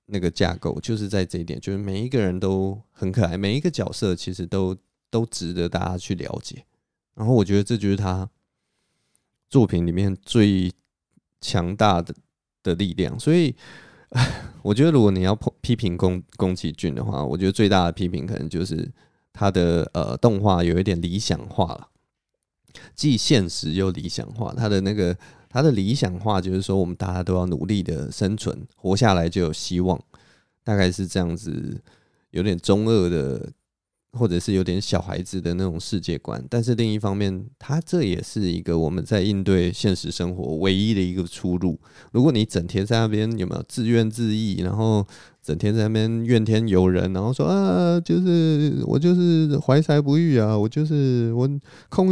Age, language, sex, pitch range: 20-39, Chinese, male, 90-115 Hz